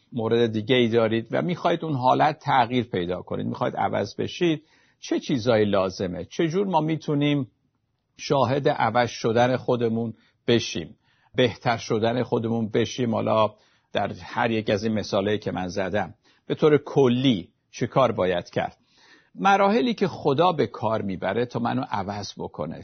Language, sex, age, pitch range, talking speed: Persian, male, 50-69, 110-140 Hz, 145 wpm